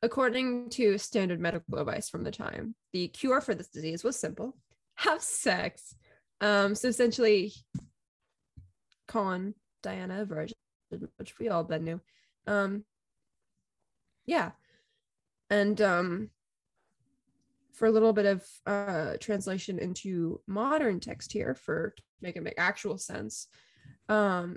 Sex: female